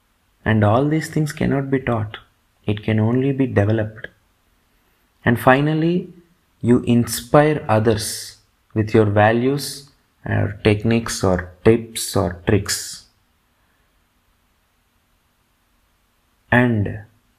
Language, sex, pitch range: Telugu, male, 100-135 Hz